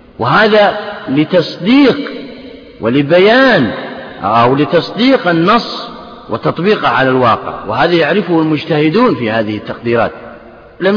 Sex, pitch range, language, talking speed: male, 165-235 Hz, Arabic, 90 wpm